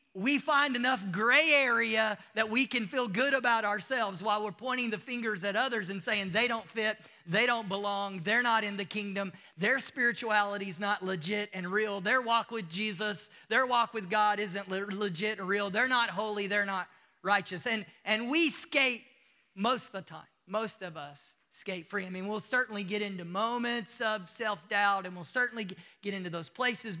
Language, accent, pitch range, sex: English, American, 190-230 Hz, male